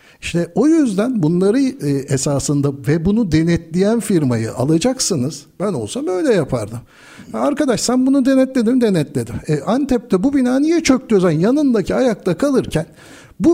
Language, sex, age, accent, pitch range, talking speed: Turkish, male, 60-79, native, 160-225 Hz, 135 wpm